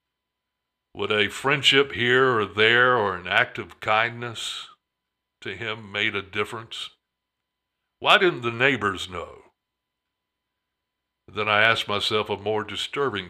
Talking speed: 125 wpm